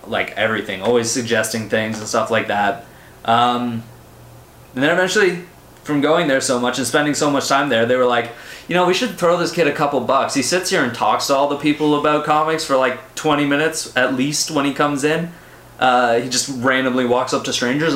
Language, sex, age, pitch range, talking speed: English, male, 20-39, 120-150 Hz, 220 wpm